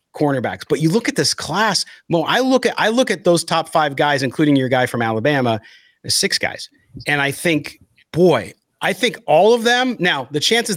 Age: 40-59